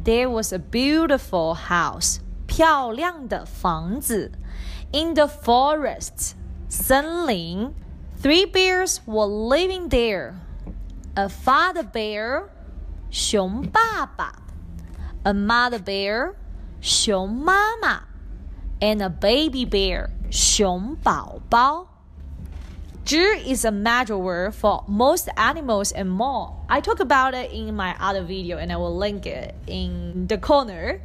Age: 20-39